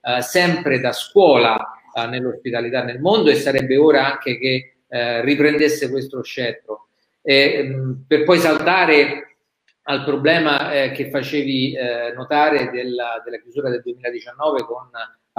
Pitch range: 125-150 Hz